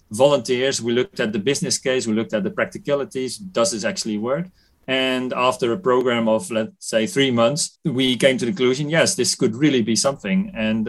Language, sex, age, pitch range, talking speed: English, male, 40-59, 115-140 Hz, 205 wpm